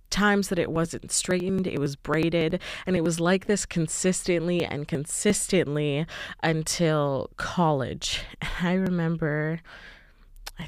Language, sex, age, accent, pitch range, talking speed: English, female, 20-39, American, 150-180 Hz, 120 wpm